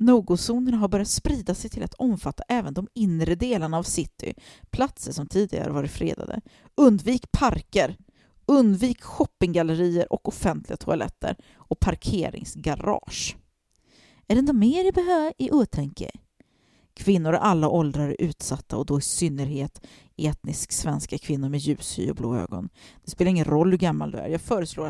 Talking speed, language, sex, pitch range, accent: 155 wpm, English, female, 150-230 Hz, Swedish